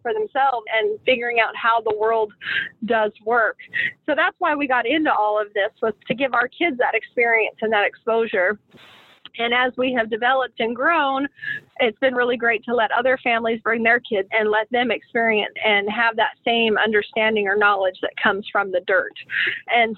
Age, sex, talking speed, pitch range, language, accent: 40-59, female, 190 wpm, 225-270 Hz, English, American